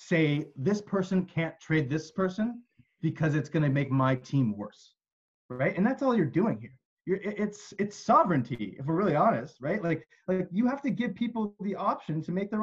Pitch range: 145-210 Hz